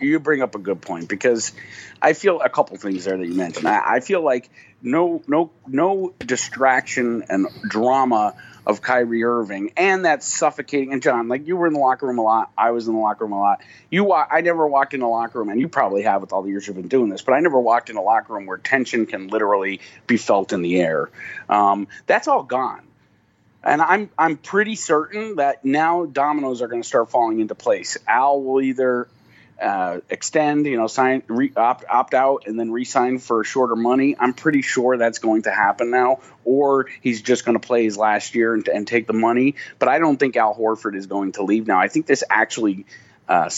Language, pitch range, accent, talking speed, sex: English, 110-155 Hz, American, 220 wpm, male